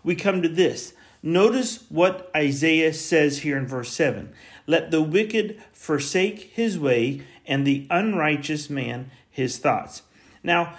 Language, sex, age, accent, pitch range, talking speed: English, male, 40-59, American, 140-180 Hz, 140 wpm